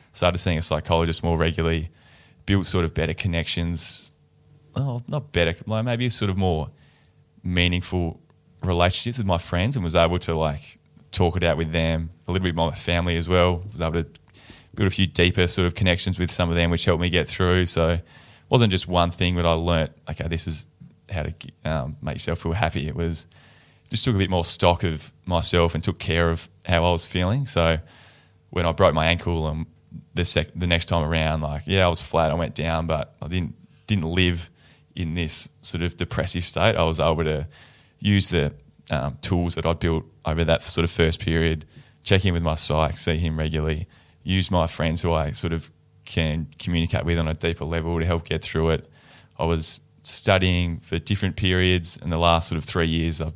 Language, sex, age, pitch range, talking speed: English, male, 20-39, 80-90 Hz, 210 wpm